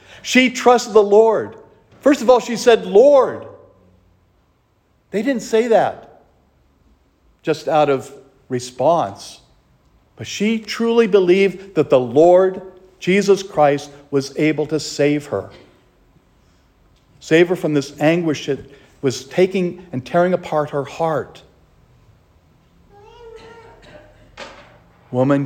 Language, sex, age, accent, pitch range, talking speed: English, male, 60-79, American, 125-185 Hz, 110 wpm